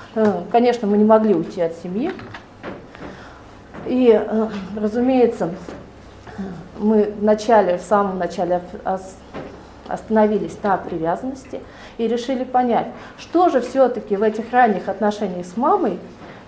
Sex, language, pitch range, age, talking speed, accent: female, Russian, 205-255 Hz, 30-49, 110 wpm, native